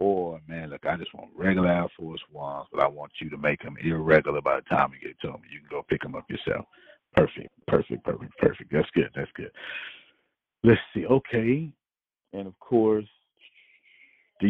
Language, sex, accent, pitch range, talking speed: English, male, American, 90-115 Hz, 195 wpm